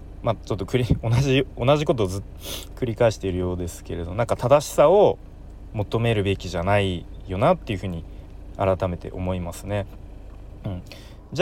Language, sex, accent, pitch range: Japanese, male, native, 85-125 Hz